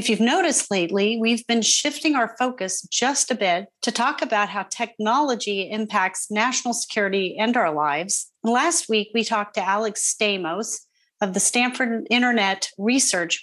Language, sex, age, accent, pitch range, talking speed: English, female, 40-59, American, 195-245 Hz, 155 wpm